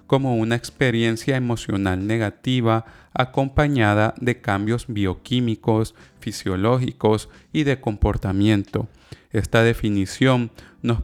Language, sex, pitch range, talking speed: Spanish, male, 105-120 Hz, 85 wpm